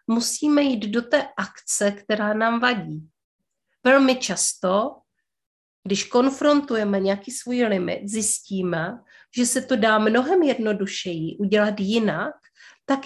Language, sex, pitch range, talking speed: Czech, female, 190-255 Hz, 115 wpm